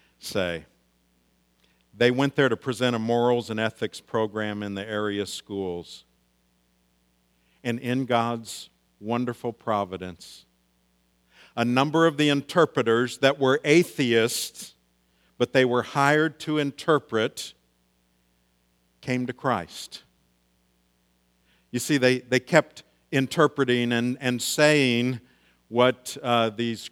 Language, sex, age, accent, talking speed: English, male, 50-69, American, 110 wpm